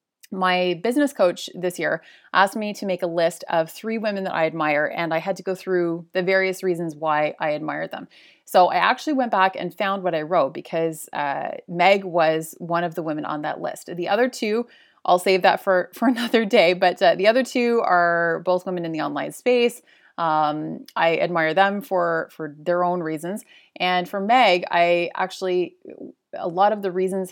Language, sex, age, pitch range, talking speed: English, female, 30-49, 170-205 Hz, 200 wpm